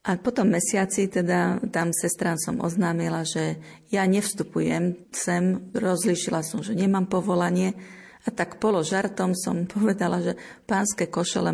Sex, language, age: female, Slovak, 40-59